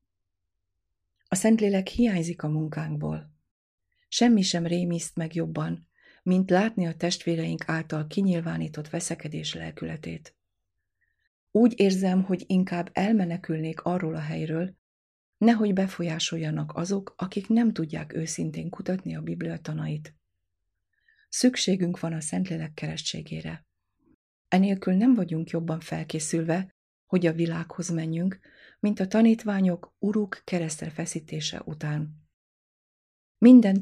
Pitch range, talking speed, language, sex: 150-185 Hz, 105 wpm, Hungarian, female